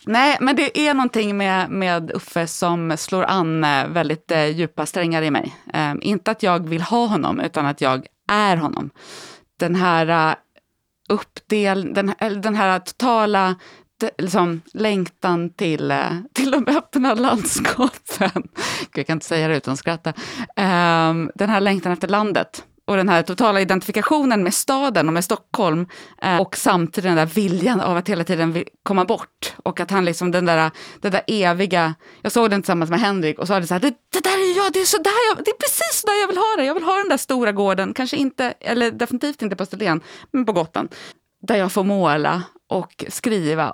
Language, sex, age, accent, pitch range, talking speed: English, female, 30-49, Swedish, 170-235 Hz, 175 wpm